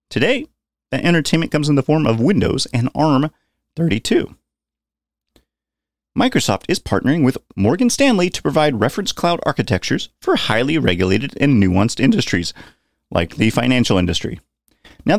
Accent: American